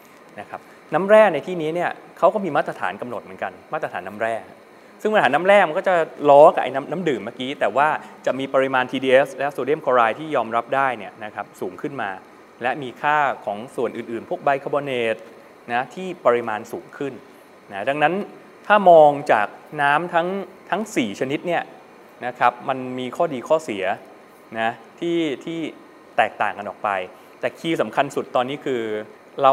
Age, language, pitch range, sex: 20-39, Thai, 115-155 Hz, male